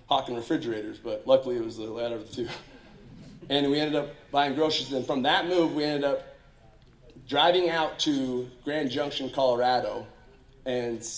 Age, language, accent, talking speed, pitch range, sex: 30-49, English, American, 165 wpm, 115-150 Hz, male